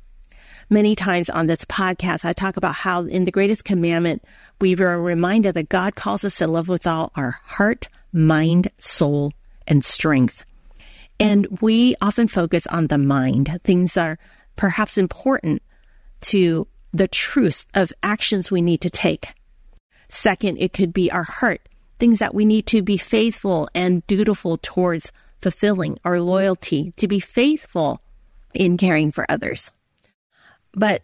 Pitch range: 170-210 Hz